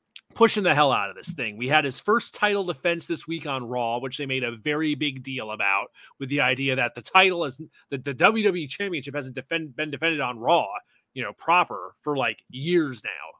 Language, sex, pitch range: English, male, 130-185 Hz